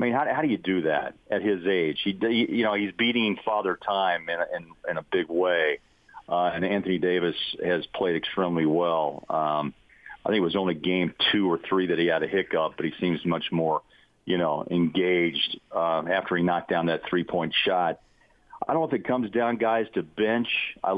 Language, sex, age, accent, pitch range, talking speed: English, male, 40-59, American, 85-110 Hz, 210 wpm